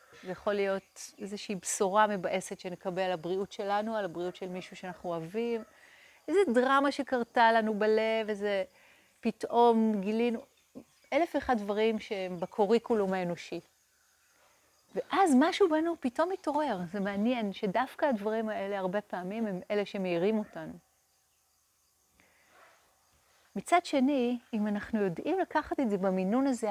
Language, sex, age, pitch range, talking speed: Hebrew, female, 30-49, 185-255 Hz, 125 wpm